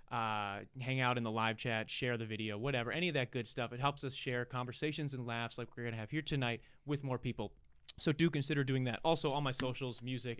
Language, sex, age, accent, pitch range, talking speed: English, male, 30-49, American, 120-145 Hz, 250 wpm